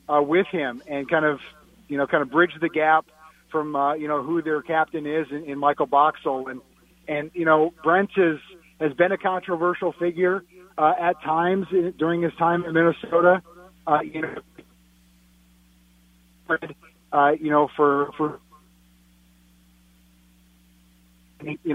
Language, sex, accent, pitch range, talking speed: English, male, American, 145-165 Hz, 145 wpm